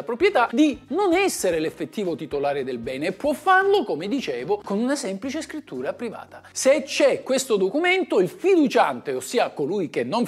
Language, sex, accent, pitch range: Italian, male, native, 185-280 Hz